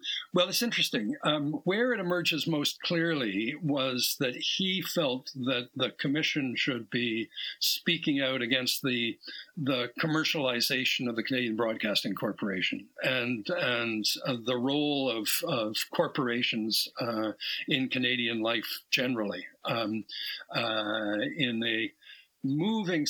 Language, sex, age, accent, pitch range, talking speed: English, male, 60-79, American, 120-160 Hz, 120 wpm